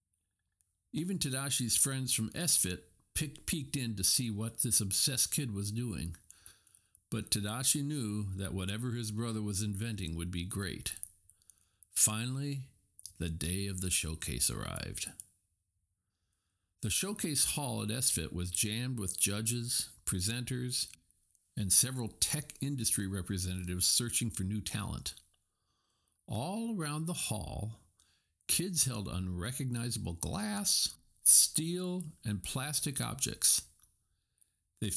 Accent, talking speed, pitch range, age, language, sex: American, 115 wpm, 90-125 Hz, 50-69, English, male